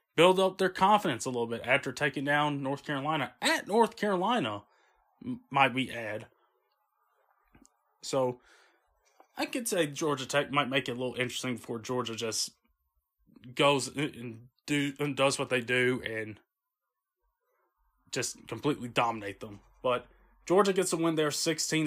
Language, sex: English, male